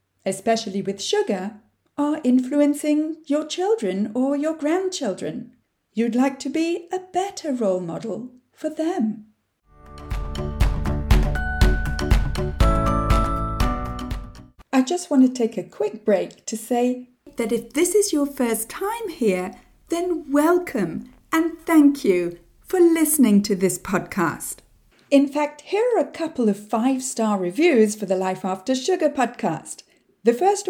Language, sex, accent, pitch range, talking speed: English, female, British, 200-300 Hz, 125 wpm